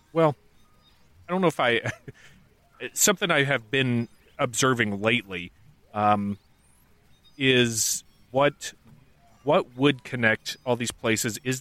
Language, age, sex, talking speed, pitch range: English, 30-49, male, 115 wpm, 100-120 Hz